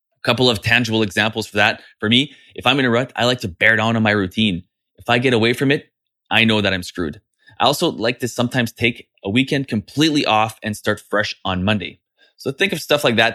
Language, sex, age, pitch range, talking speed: English, male, 20-39, 105-130 Hz, 240 wpm